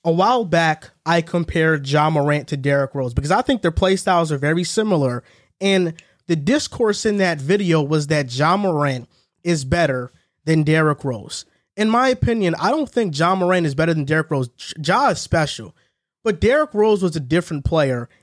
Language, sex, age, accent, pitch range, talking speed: English, male, 20-39, American, 155-210 Hz, 190 wpm